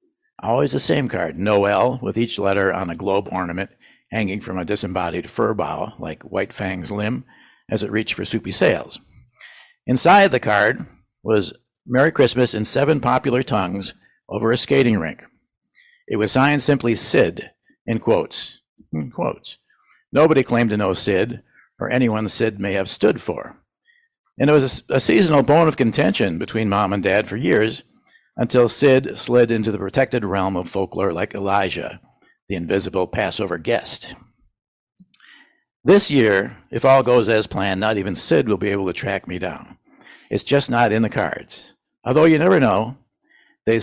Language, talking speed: English, 165 wpm